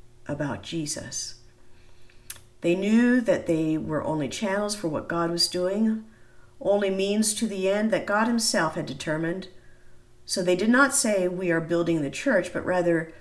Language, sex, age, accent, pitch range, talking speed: English, female, 50-69, American, 135-200 Hz, 165 wpm